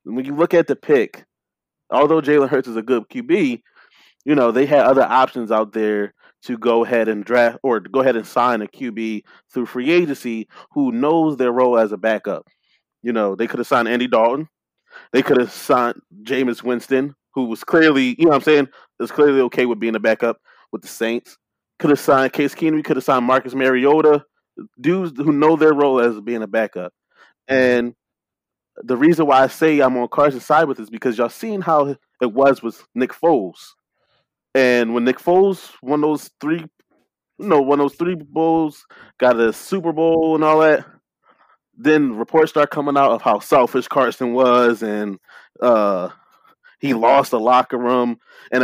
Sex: male